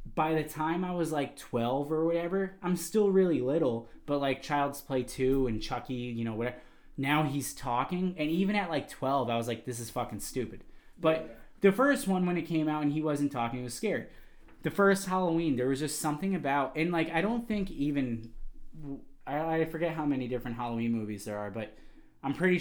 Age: 20-39